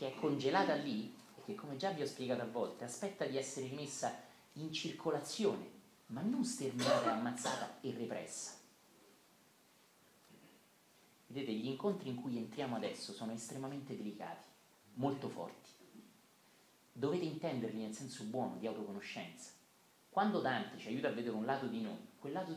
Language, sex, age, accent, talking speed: Italian, male, 40-59, native, 150 wpm